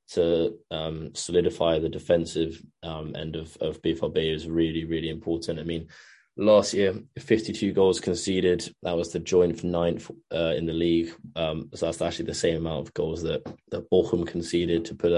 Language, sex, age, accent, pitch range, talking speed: English, male, 20-39, British, 80-90 Hz, 180 wpm